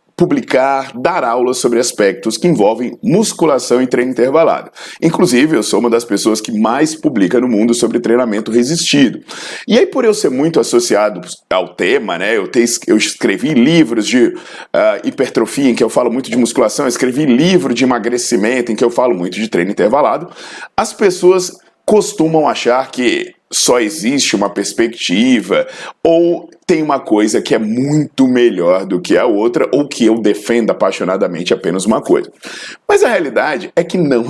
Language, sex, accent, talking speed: Portuguese, male, Brazilian, 165 wpm